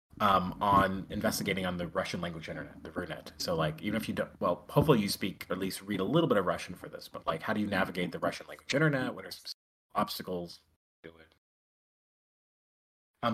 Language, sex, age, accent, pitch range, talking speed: English, male, 30-49, American, 90-115 Hz, 210 wpm